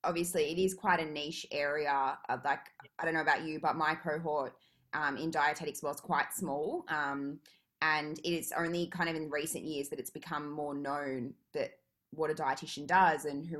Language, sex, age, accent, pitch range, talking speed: English, female, 20-39, Australian, 145-165 Hz, 195 wpm